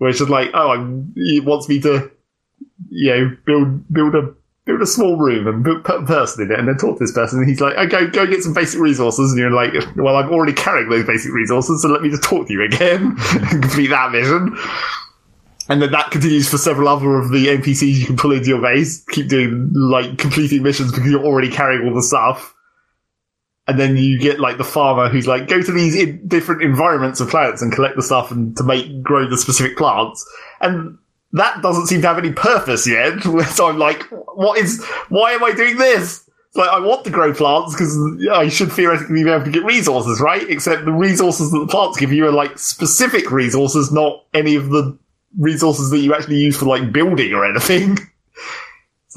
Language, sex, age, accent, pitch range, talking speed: English, male, 20-39, British, 130-165 Hz, 220 wpm